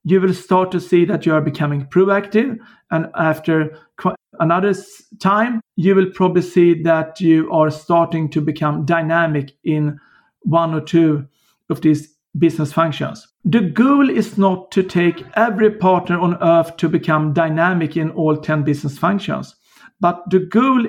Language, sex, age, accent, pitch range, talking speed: English, male, 50-69, Swedish, 165-195 Hz, 155 wpm